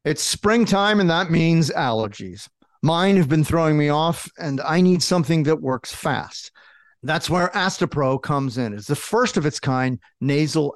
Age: 50-69